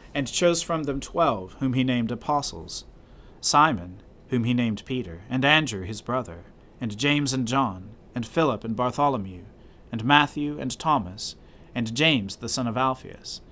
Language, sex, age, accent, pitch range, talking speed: English, male, 40-59, American, 100-145 Hz, 160 wpm